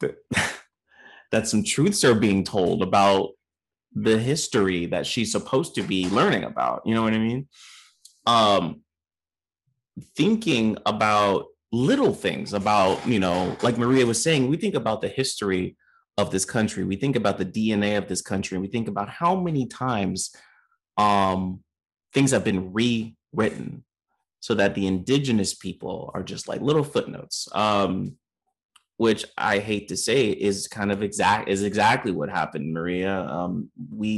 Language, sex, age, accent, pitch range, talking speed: English, male, 30-49, American, 95-125 Hz, 155 wpm